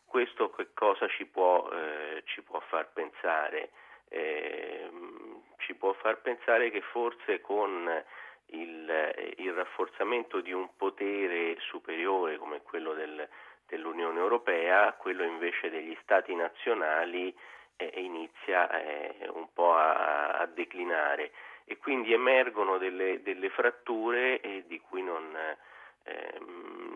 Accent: native